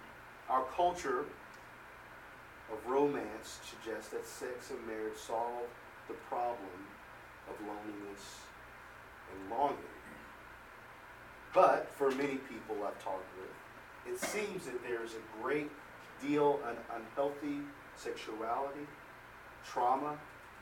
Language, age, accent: English, 40-59, American